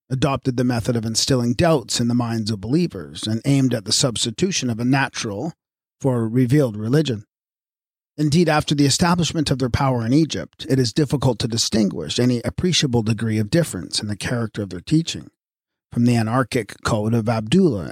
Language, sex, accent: English, male, American